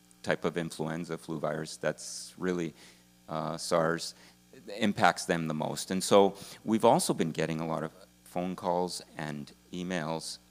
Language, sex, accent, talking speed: English, male, American, 150 wpm